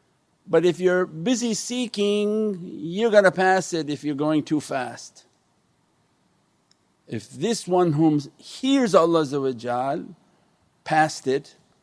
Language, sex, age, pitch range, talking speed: English, male, 50-69, 140-175 Hz, 110 wpm